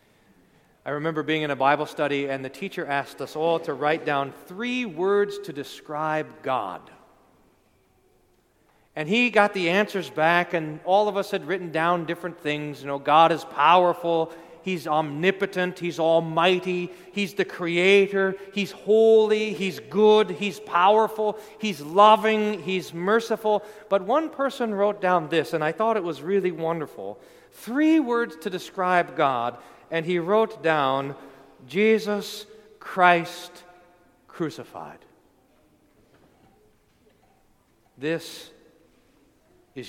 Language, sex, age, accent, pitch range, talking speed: English, male, 40-59, American, 160-210 Hz, 130 wpm